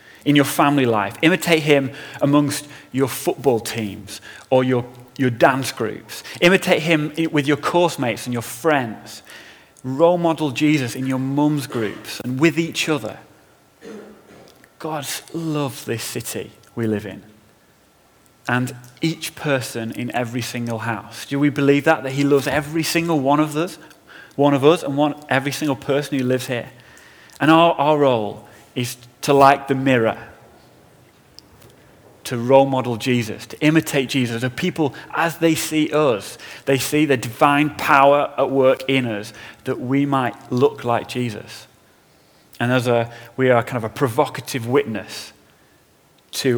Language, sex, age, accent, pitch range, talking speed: English, male, 30-49, British, 120-150 Hz, 155 wpm